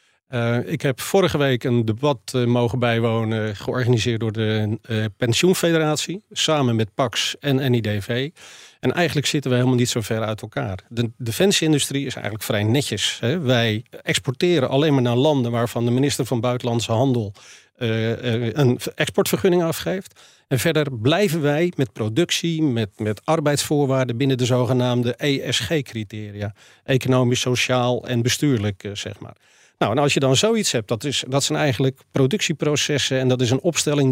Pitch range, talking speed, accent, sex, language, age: 120-155 Hz, 160 wpm, Dutch, male, Dutch, 40-59